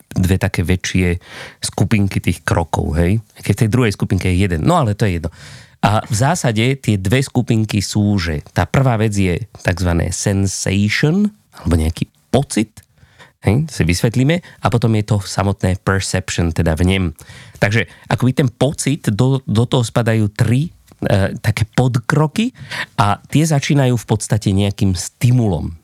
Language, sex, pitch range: Slovak, male, 95-130 Hz